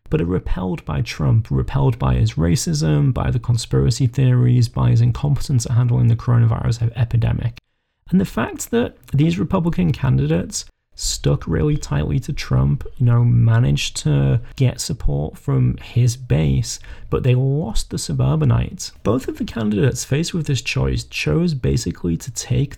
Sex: male